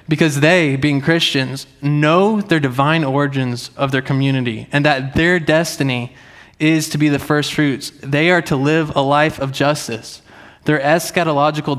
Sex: male